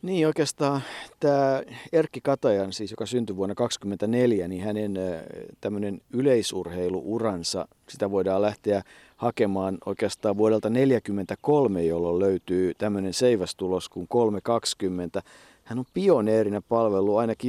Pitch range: 105-130 Hz